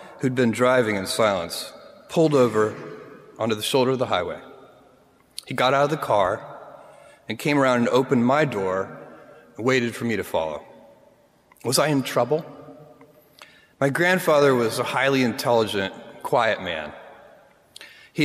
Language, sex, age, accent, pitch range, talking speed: English, male, 30-49, American, 120-160 Hz, 150 wpm